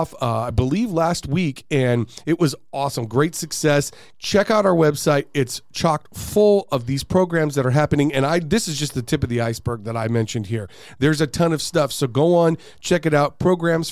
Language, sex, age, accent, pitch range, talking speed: English, male, 40-59, American, 130-175 Hz, 215 wpm